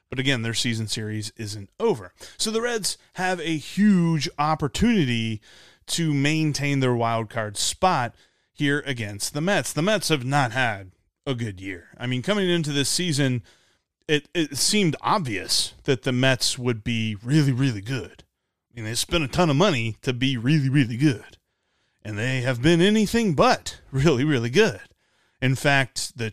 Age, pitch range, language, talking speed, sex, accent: 30-49, 115-160 Hz, English, 170 wpm, male, American